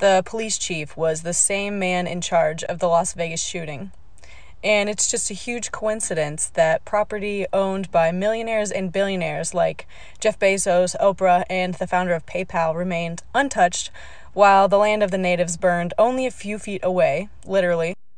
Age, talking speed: 20-39, 170 wpm